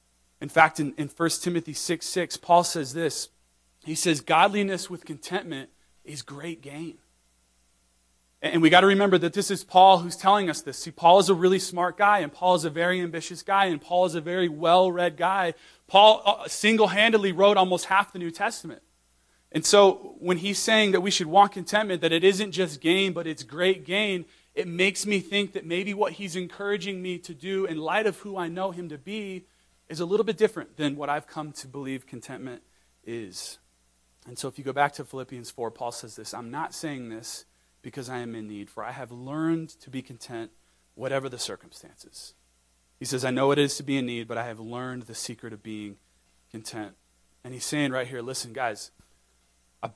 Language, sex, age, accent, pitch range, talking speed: English, male, 30-49, American, 120-180 Hz, 205 wpm